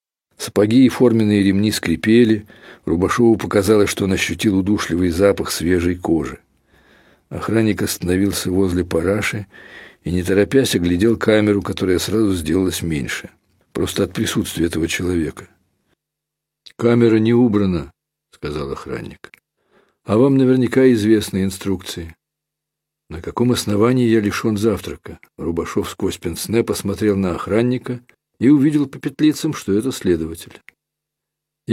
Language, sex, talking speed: Russian, male, 120 wpm